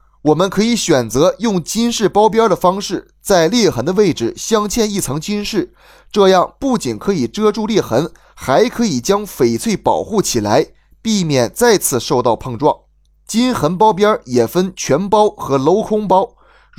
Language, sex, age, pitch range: Chinese, male, 20-39, 170-220 Hz